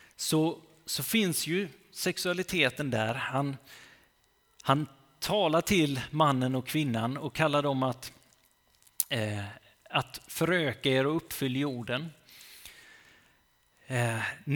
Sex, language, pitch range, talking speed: male, Swedish, 125-160 Hz, 105 wpm